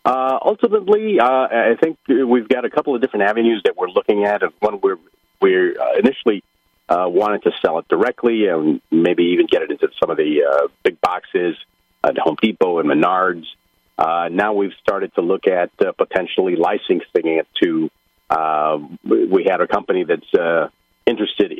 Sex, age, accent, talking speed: male, 40-59, American, 185 wpm